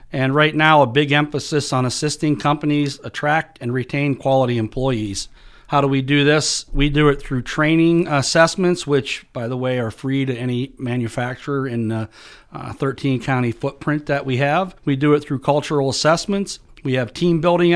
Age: 40-59